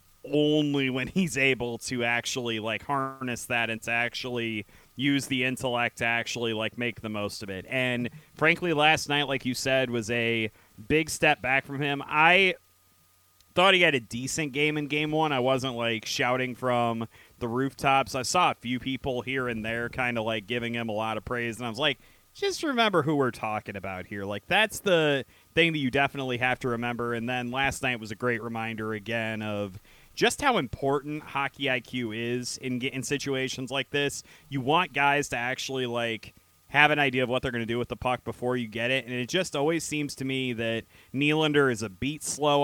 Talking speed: 210 wpm